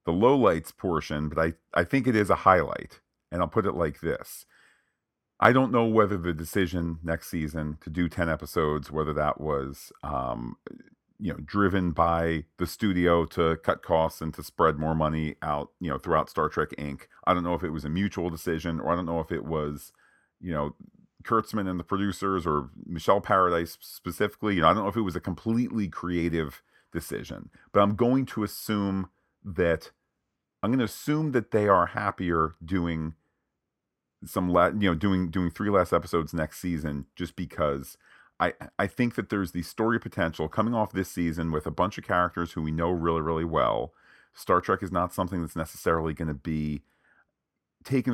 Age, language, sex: 40-59, English, male